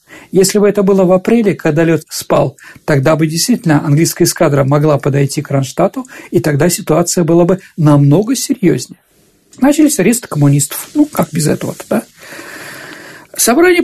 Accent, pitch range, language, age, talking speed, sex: native, 165-250 Hz, Russian, 50-69, 150 wpm, male